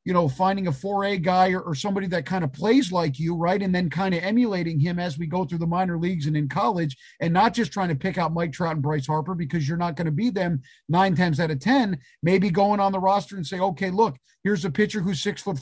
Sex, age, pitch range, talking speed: male, 40-59, 160-200 Hz, 275 wpm